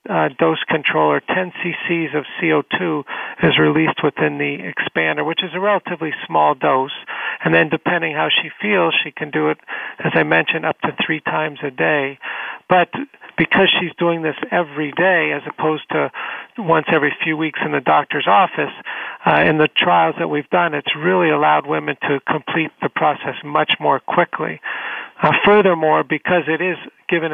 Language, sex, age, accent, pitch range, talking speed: English, male, 50-69, American, 140-175 Hz, 175 wpm